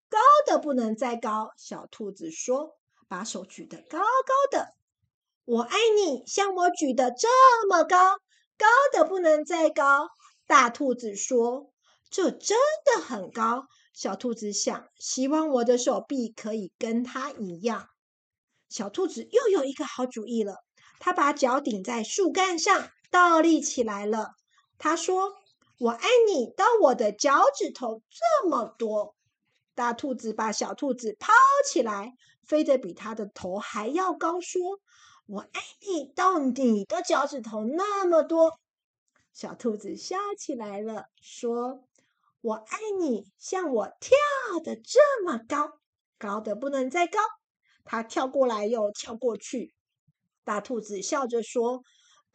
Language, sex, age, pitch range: Chinese, female, 50-69, 230-340 Hz